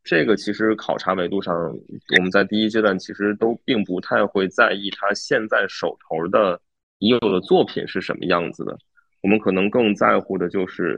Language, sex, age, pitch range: Chinese, male, 20-39, 95-110 Hz